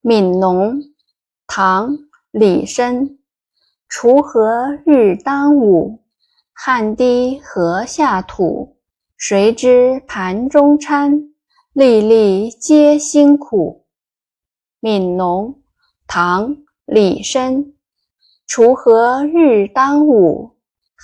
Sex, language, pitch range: female, Chinese, 205-290 Hz